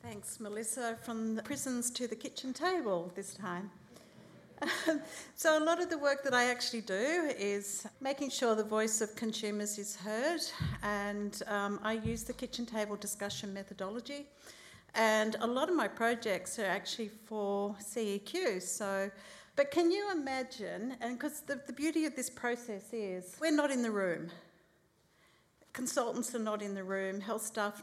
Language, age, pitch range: English, 50-69, 205-250 Hz